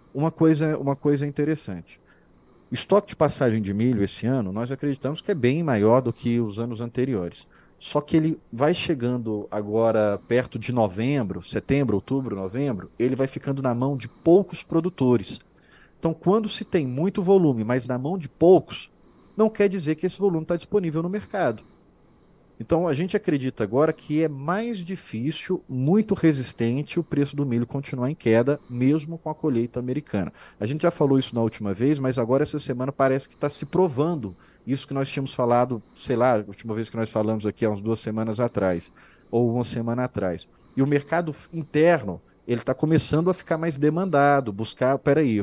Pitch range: 115-155 Hz